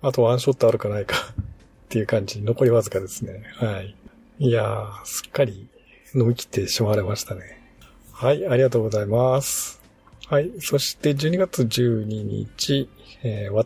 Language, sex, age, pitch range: Japanese, male, 50-69, 105-130 Hz